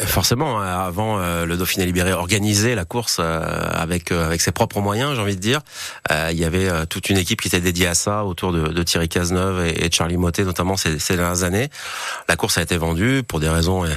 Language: French